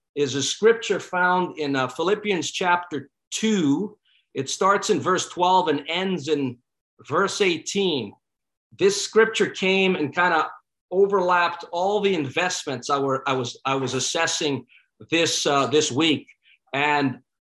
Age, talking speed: 50-69, 130 wpm